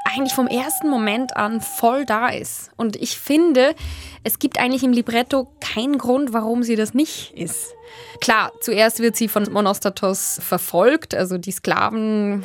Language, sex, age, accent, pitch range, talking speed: German, female, 20-39, German, 205-260 Hz, 160 wpm